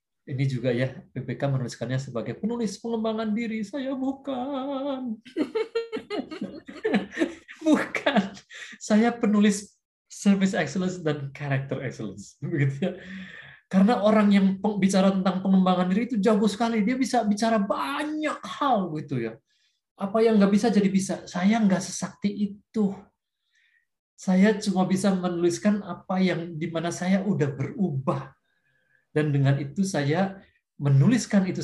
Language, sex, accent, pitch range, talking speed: Indonesian, male, native, 155-225 Hz, 120 wpm